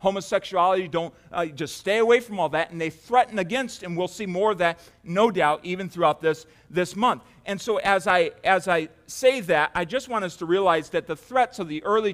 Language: English